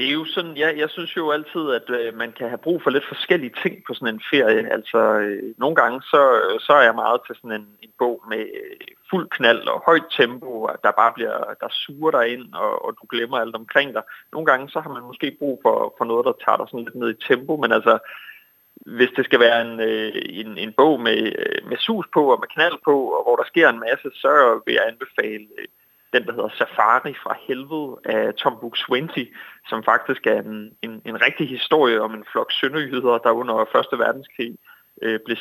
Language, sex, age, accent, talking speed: Danish, male, 30-49, native, 220 wpm